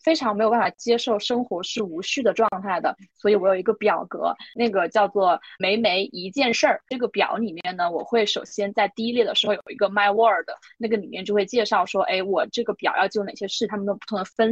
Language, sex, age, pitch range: Chinese, female, 20-39, 200-235 Hz